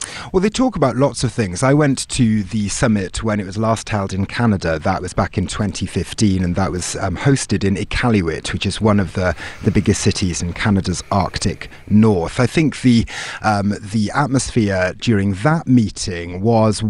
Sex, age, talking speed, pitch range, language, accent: male, 30-49, 190 wpm, 100-125 Hz, English, British